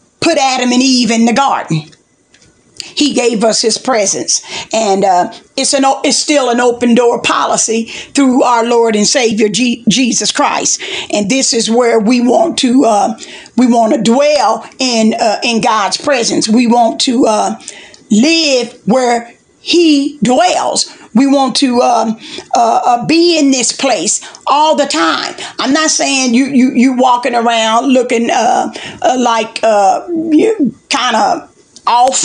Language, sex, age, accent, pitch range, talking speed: English, female, 50-69, American, 230-285 Hz, 160 wpm